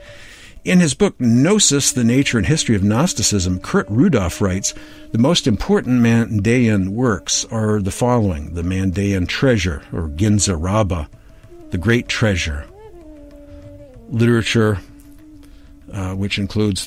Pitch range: 95-115 Hz